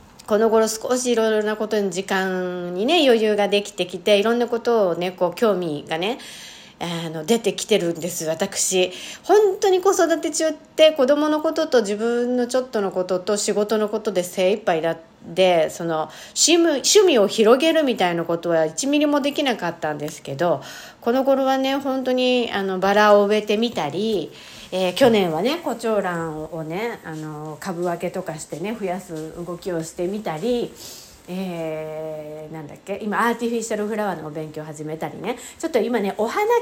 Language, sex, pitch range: Japanese, female, 180-265 Hz